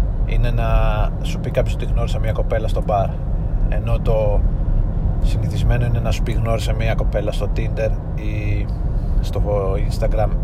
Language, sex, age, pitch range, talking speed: Greek, male, 30-49, 100-120 Hz, 150 wpm